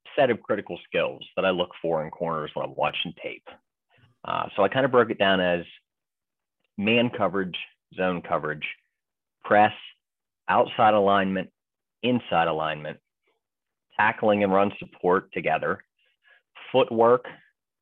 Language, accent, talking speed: English, American, 130 wpm